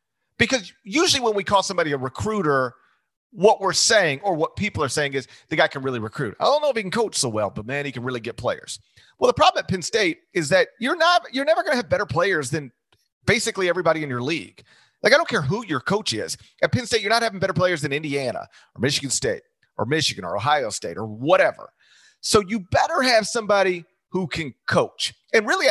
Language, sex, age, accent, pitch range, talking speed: English, male, 40-59, American, 125-195 Hz, 230 wpm